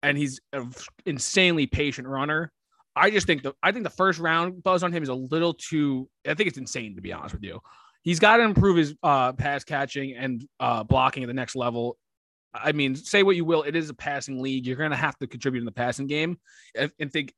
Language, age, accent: English, 20-39, American